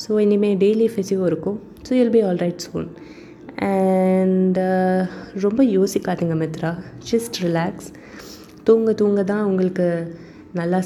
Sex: female